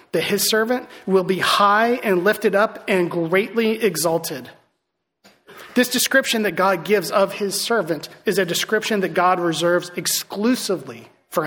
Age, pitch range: 30-49, 175-220 Hz